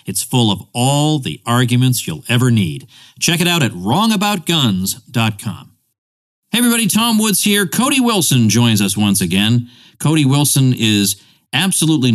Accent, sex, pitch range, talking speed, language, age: American, male, 100-140 Hz, 145 wpm, English, 50-69